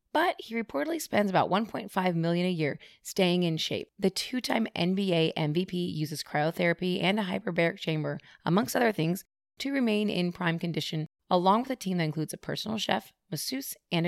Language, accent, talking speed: English, American, 175 wpm